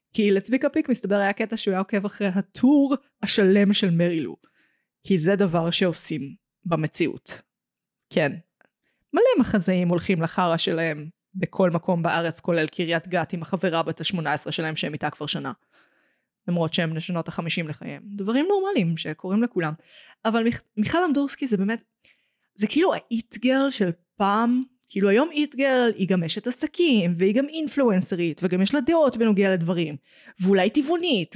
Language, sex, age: Hebrew, female, 20-39